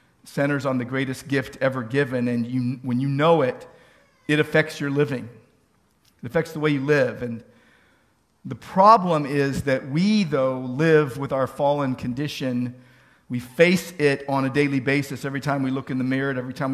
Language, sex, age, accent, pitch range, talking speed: English, male, 50-69, American, 135-190 Hz, 185 wpm